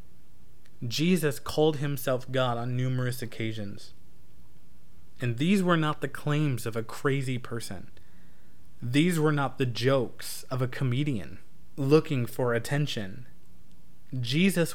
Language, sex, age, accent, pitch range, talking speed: English, male, 20-39, American, 120-150 Hz, 120 wpm